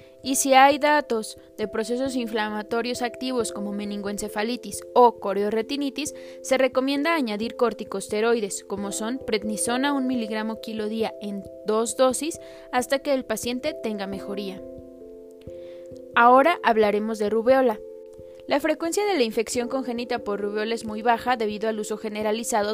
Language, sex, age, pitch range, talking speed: Spanish, female, 20-39, 205-255 Hz, 135 wpm